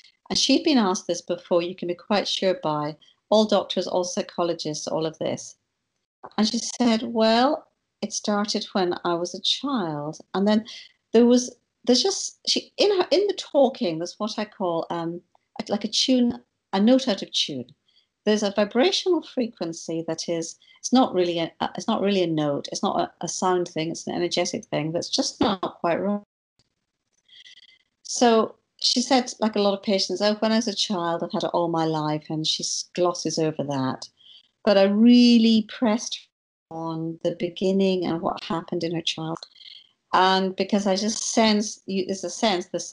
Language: English